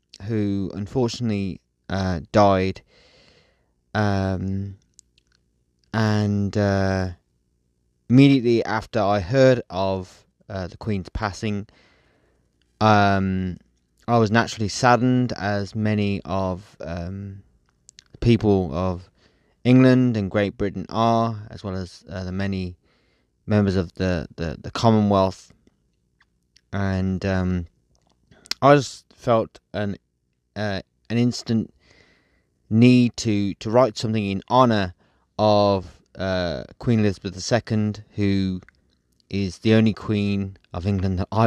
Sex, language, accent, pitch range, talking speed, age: male, English, British, 85-105 Hz, 105 wpm, 20-39